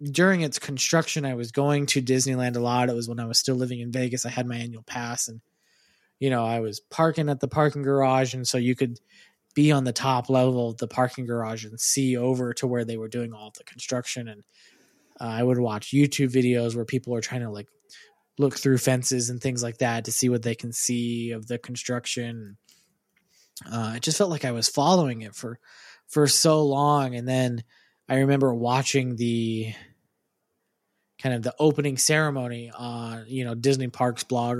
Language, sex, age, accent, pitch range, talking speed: English, male, 20-39, American, 115-130 Hz, 205 wpm